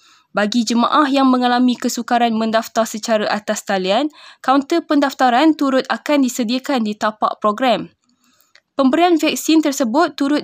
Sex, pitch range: female, 225-275 Hz